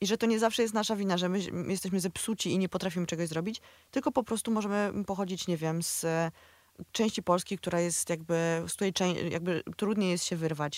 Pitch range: 175-215 Hz